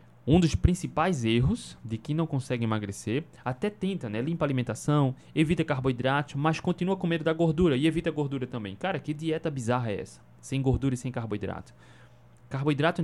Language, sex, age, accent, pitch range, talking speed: Portuguese, male, 20-39, Brazilian, 115-155 Hz, 180 wpm